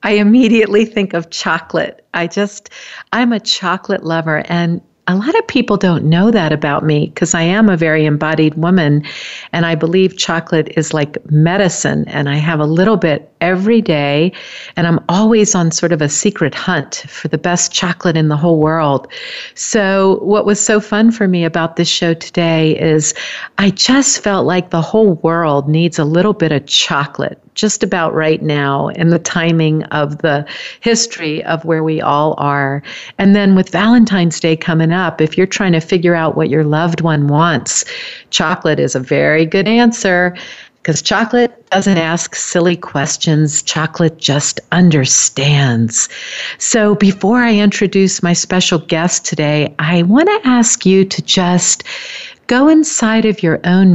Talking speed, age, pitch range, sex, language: 170 wpm, 50-69, 155-195 Hz, female, English